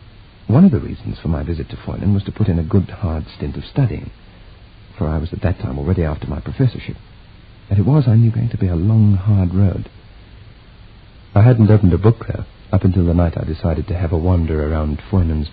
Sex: male